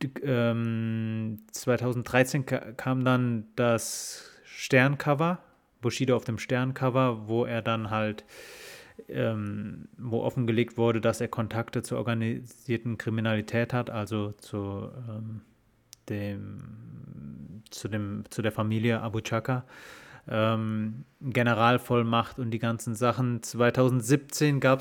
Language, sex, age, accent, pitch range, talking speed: German, male, 30-49, German, 115-130 Hz, 105 wpm